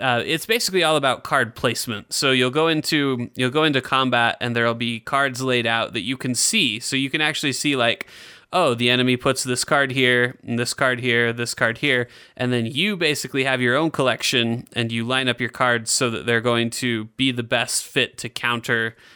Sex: male